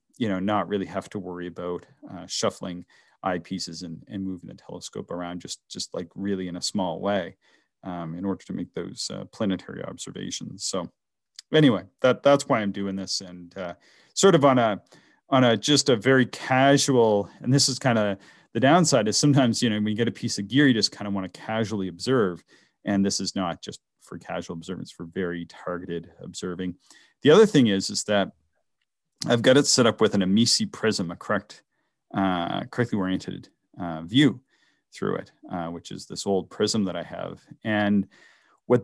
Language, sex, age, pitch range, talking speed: English, male, 40-59, 95-115 Hz, 195 wpm